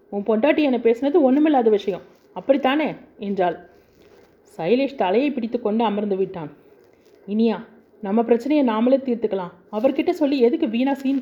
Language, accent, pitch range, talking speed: Tamil, native, 205-270 Hz, 130 wpm